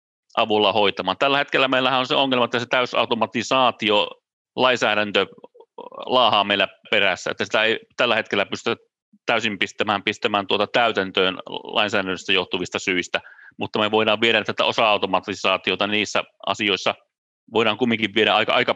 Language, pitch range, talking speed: Finnish, 105-135 Hz, 135 wpm